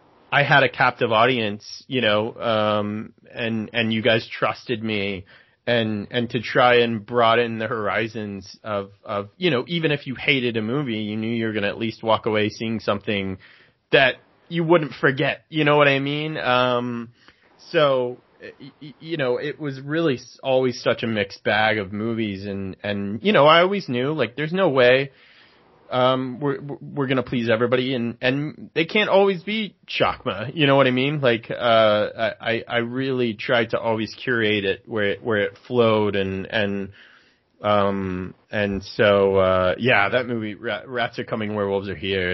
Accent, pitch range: American, 105-140 Hz